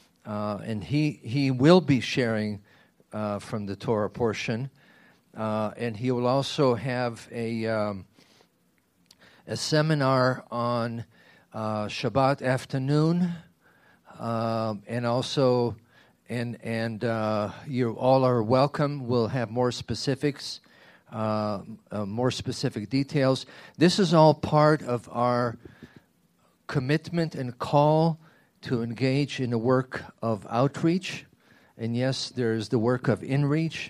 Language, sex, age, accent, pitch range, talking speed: English, male, 50-69, American, 115-135 Hz, 120 wpm